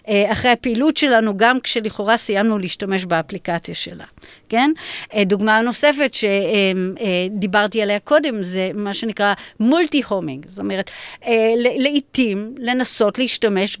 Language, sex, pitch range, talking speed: Hebrew, female, 205-255 Hz, 110 wpm